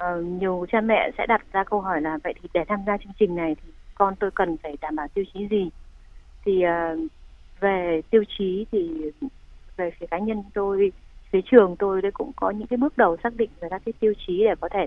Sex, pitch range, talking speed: female, 180-230 Hz, 225 wpm